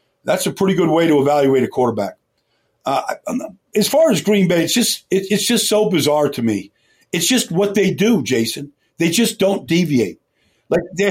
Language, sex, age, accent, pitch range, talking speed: English, male, 50-69, American, 140-195 Hz, 195 wpm